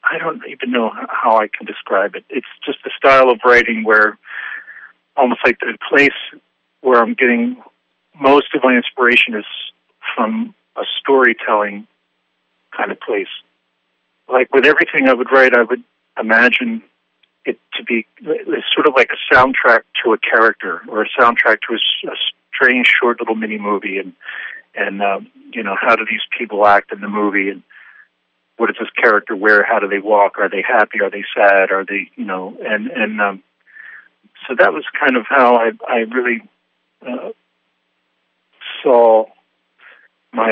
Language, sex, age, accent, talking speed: English, male, 40-59, American, 165 wpm